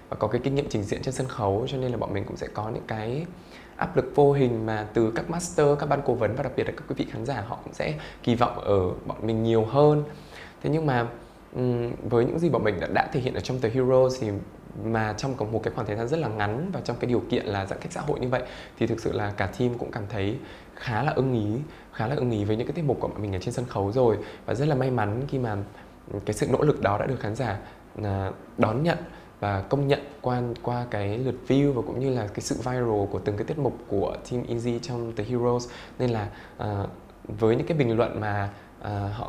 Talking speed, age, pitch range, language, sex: 265 wpm, 10-29, 105-135 Hz, Vietnamese, male